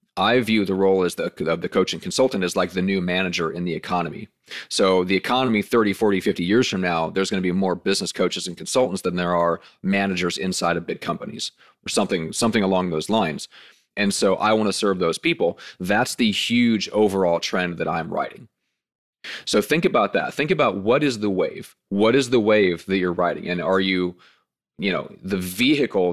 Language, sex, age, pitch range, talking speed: English, male, 30-49, 90-110 Hz, 205 wpm